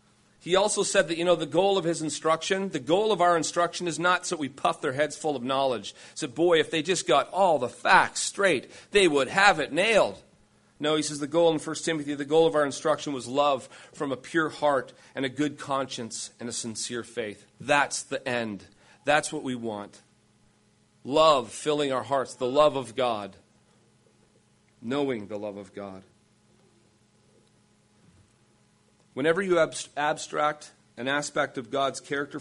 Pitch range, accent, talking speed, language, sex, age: 120-160 Hz, American, 180 wpm, English, male, 40-59